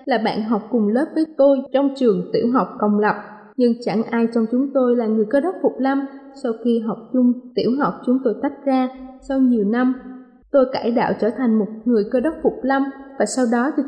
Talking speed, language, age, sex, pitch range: 230 wpm, Vietnamese, 20-39, female, 225-275 Hz